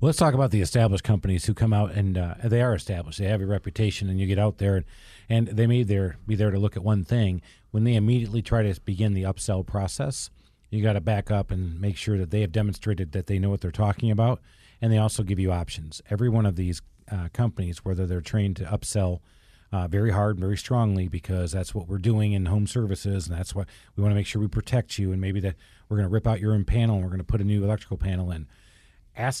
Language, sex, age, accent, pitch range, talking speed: English, male, 40-59, American, 95-115 Hz, 260 wpm